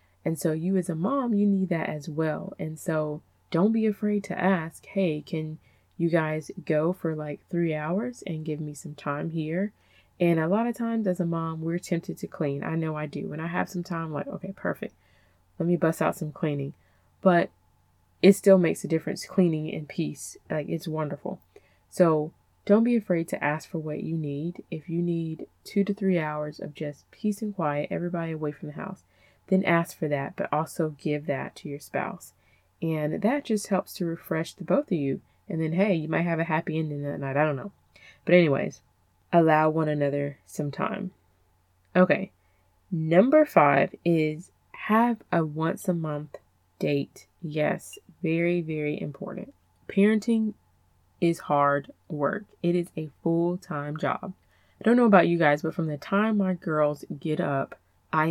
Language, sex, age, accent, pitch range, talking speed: English, female, 20-39, American, 150-185 Hz, 190 wpm